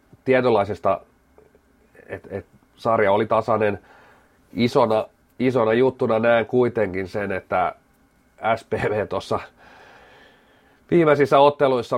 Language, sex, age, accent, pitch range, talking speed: Finnish, male, 30-49, native, 100-120 Hz, 85 wpm